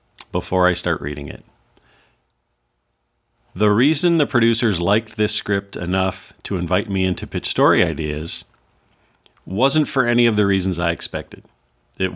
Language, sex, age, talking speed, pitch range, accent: English, male, 40-59, 145 wpm, 85-105 Hz, American